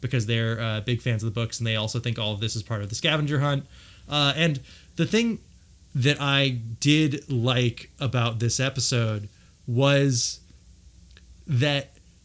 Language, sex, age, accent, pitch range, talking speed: English, male, 20-39, American, 115-145 Hz, 165 wpm